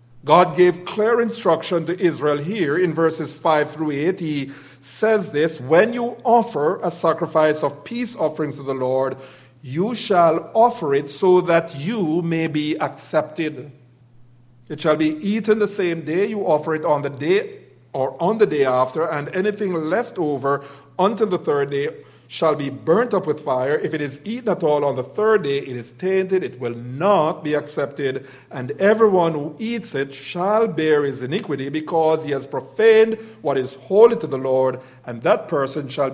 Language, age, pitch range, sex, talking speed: English, 50-69, 130-180 Hz, male, 180 wpm